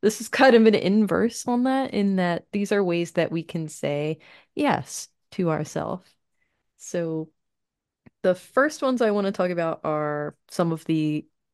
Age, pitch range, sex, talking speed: 30-49, 150-200 Hz, female, 170 wpm